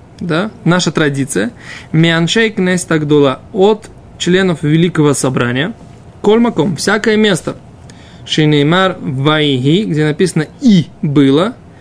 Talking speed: 75 wpm